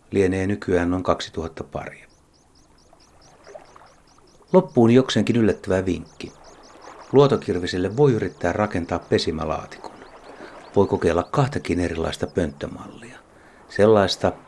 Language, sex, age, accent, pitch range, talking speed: Finnish, male, 60-79, native, 90-115 Hz, 85 wpm